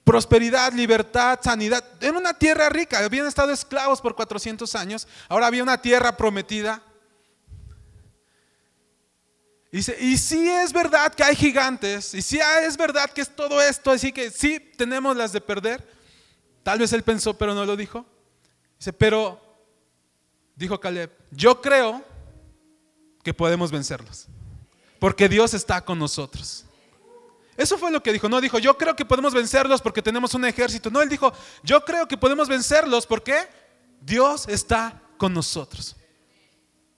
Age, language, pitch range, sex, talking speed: 30-49, Spanish, 165-260 Hz, male, 155 wpm